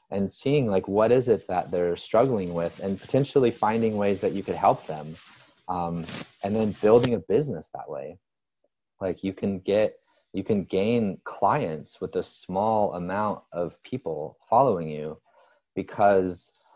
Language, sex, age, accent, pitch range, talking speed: English, male, 30-49, American, 85-110 Hz, 160 wpm